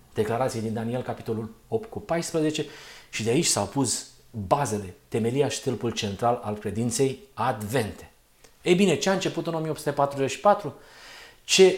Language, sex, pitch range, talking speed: Romanian, male, 125-165 Hz, 140 wpm